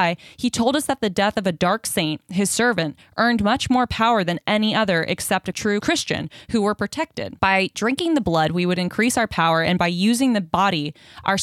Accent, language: American, English